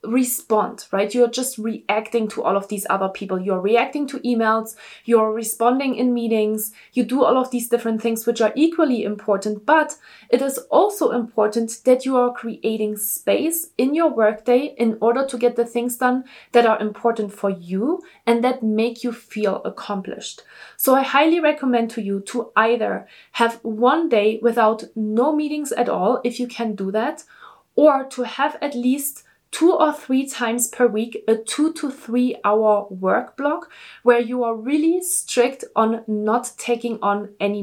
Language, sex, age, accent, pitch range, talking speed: English, female, 20-39, German, 220-270 Hz, 175 wpm